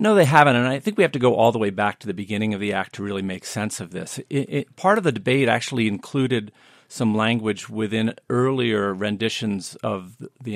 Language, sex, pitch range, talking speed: English, male, 105-130 Hz, 220 wpm